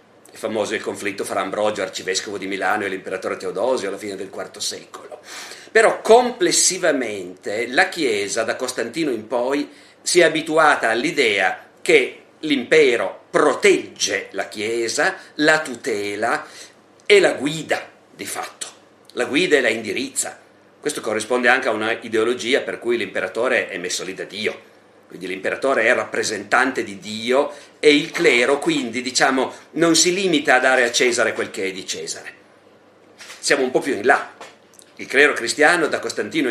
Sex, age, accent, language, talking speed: male, 50-69, native, Italian, 150 wpm